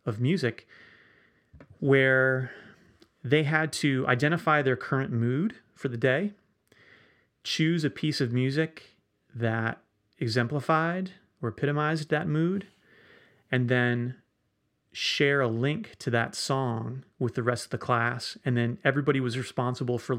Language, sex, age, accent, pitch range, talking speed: English, male, 30-49, American, 125-155 Hz, 130 wpm